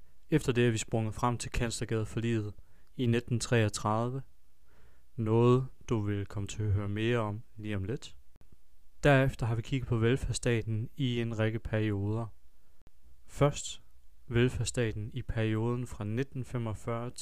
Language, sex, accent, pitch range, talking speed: Danish, male, native, 100-125 Hz, 140 wpm